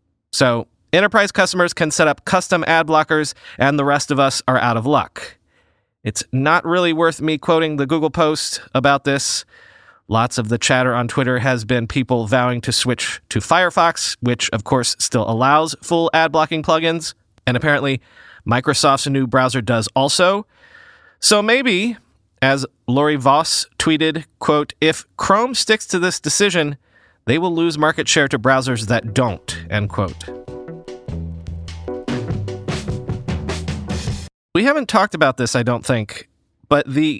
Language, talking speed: English, 150 wpm